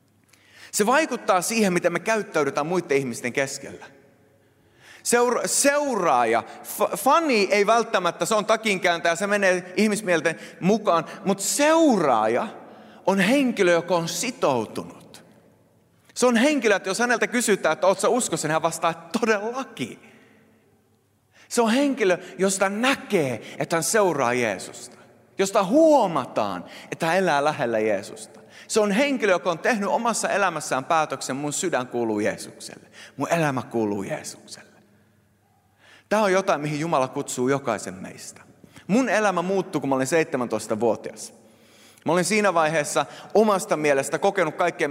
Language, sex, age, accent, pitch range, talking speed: Finnish, male, 30-49, native, 140-205 Hz, 125 wpm